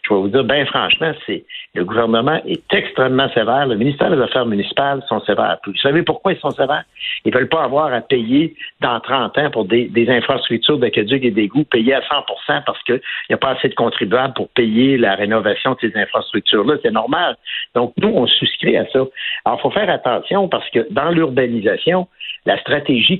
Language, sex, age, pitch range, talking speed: French, male, 60-79, 120-170 Hz, 200 wpm